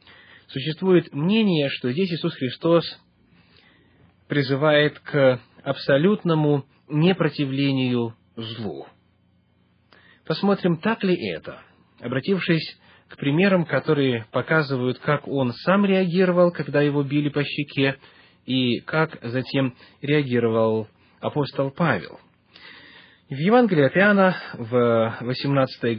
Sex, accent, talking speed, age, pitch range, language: male, native, 95 wpm, 20-39, 125-165 Hz, Russian